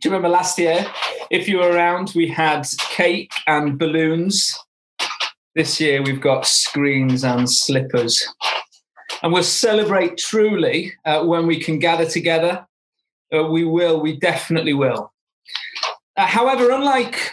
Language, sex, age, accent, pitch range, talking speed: English, male, 30-49, British, 160-195 Hz, 140 wpm